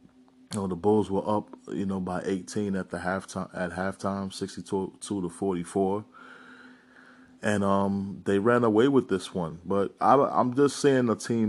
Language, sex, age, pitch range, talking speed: English, male, 20-39, 90-115 Hz, 160 wpm